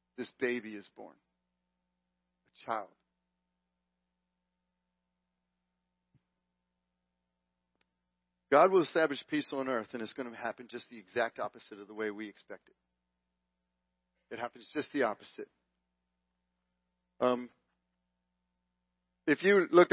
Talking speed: 110 wpm